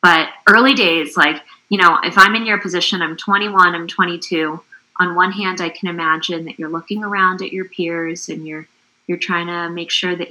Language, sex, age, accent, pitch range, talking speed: English, female, 20-39, American, 160-185 Hz, 210 wpm